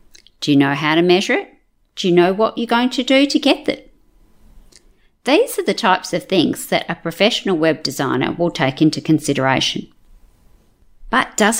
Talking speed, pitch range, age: 180 wpm, 170-245 Hz, 50-69